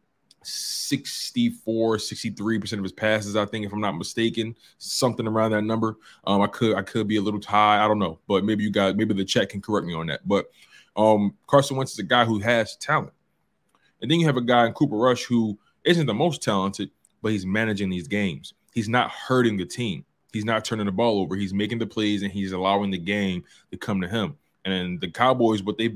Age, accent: 20-39, American